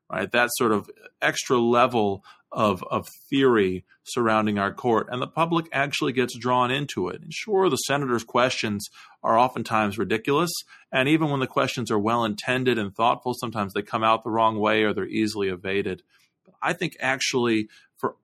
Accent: American